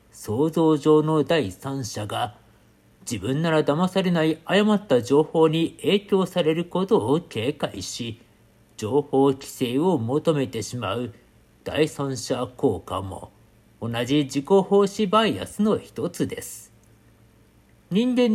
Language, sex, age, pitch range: Japanese, male, 50-69, 115-190 Hz